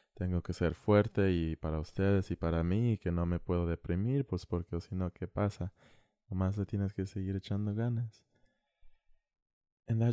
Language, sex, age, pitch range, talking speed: English, male, 20-39, 85-105 Hz, 120 wpm